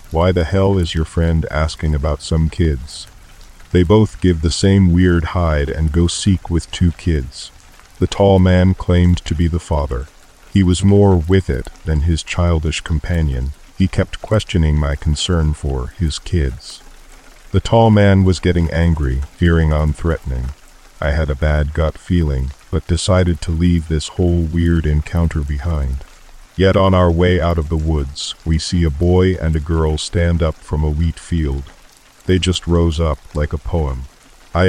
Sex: male